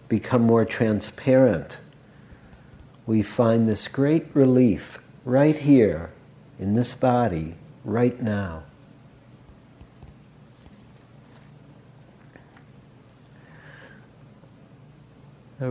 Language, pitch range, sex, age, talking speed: English, 110-135 Hz, male, 60-79, 60 wpm